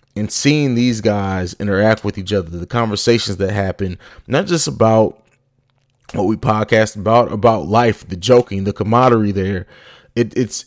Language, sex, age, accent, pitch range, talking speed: English, male, 20-39, American, 105-125 Hz, 150 wpm